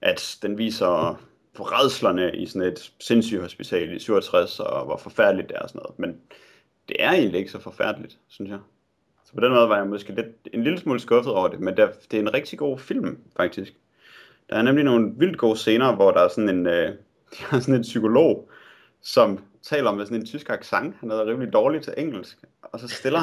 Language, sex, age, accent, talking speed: Danish, male, 30-49, native, 215 wpm